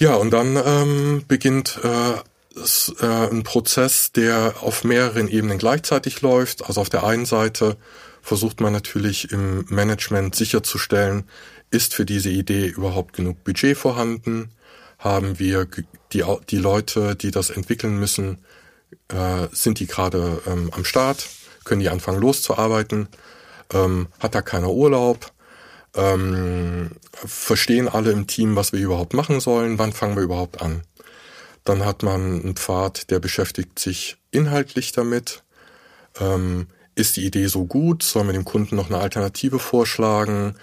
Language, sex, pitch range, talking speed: German, male, 95-120 Hz, 140 wpm